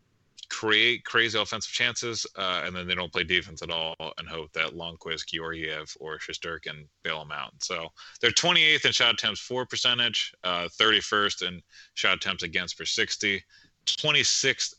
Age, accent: 30-49, American